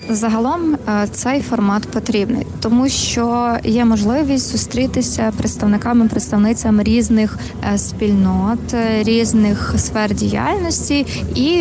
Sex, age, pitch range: female, 20-39, 205-235 Hz